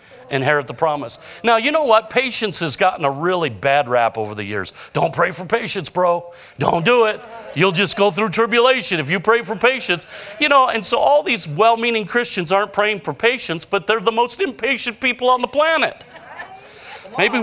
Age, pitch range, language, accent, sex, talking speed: 40-59, 140-230 Hz, English, American, male, 195 wpm